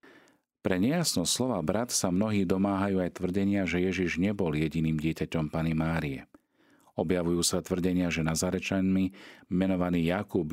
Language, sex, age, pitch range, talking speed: Slovak, male, 40-59, 80-95 Hz, 135 wpm